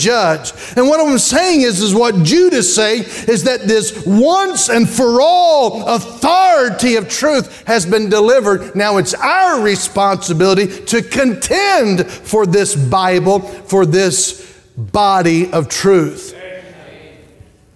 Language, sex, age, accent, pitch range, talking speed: English, male, 40-59, American, 165-230 Hz, 125 wpm